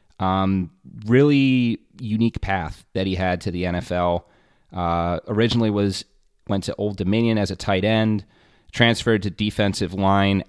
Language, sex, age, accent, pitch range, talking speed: English, male, 30-49, American, 90-105 Hz, 145 wpm